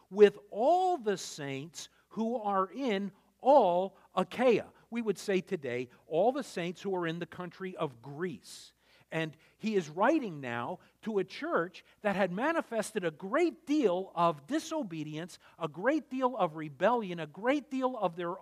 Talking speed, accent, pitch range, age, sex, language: 160 wpm, American, 135-210 Hz, 50-69, male, English